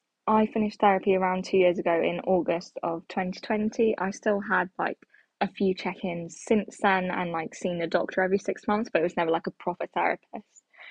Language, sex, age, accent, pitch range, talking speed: English, female, 10-29, British, 180-220 Hz, 200 wpm